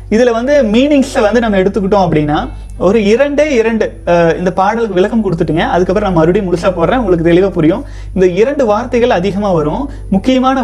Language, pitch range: Tamil, 180-245 Hz